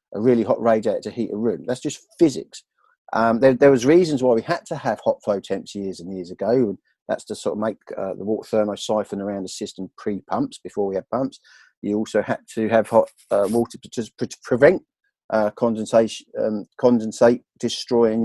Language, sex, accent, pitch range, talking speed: English, male, British, 115-170 Hz, 200 wpm